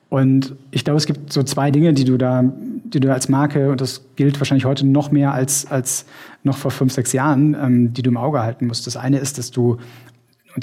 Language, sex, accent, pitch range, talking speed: German, male, German, 125-140 Hz, 235 wpm